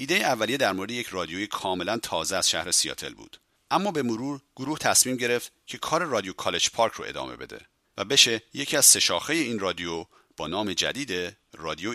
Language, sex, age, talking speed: Persian, male, 40-59, 190 wpm